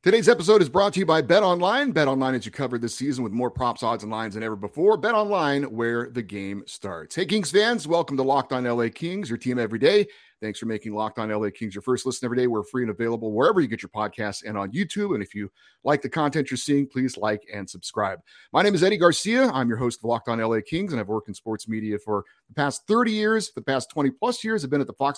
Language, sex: English, male